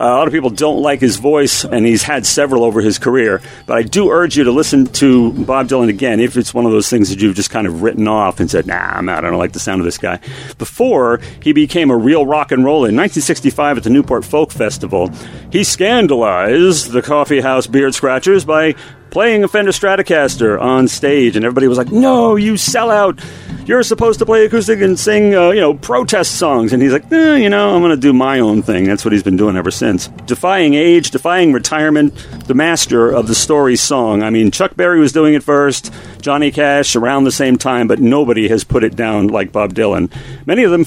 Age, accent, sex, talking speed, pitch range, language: 40-59, American, male, 230 wpm, 115-160 Hz, English